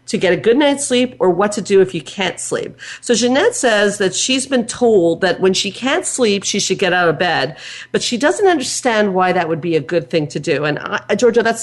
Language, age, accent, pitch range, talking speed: English, 50-69, American, 170-235 Hz, 255 wpm